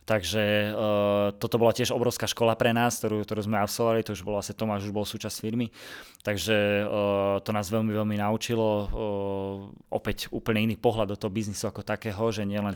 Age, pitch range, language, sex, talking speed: 20-39, 105-115 Hz, Slovak, male, 195 wpm